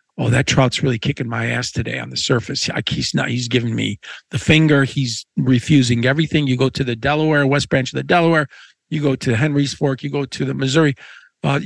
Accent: American